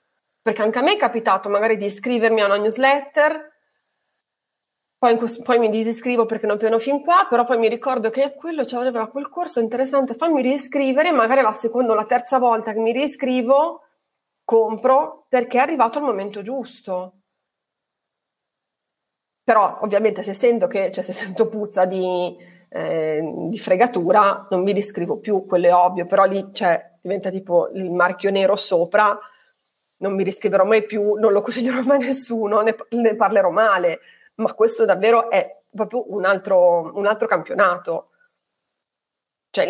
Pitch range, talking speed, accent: 200-260 Hz, 160 wpm, native